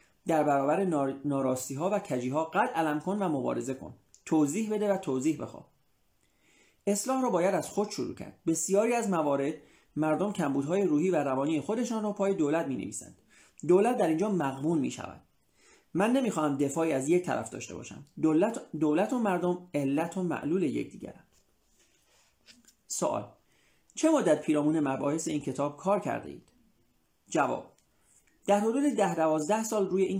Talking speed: 165 wpm